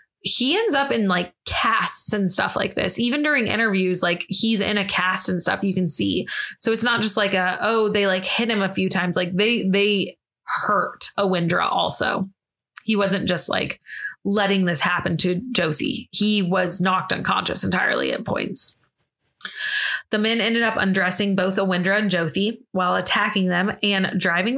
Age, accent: 20-39, American